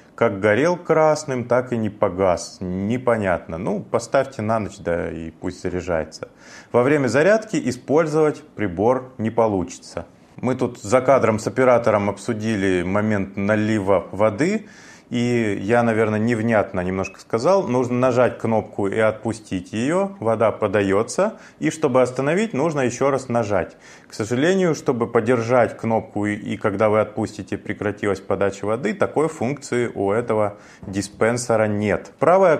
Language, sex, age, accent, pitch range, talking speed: Russian, male, 30-49, native, 100-130 Hz, 135 wpm